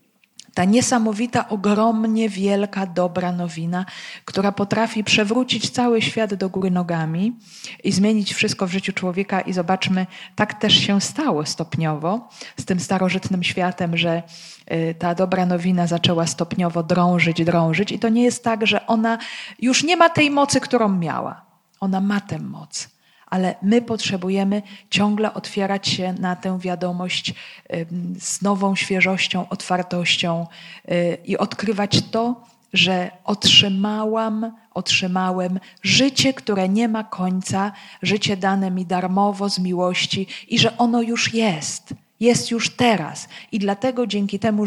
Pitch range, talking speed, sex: 180-220 Hz, 135 wpm, female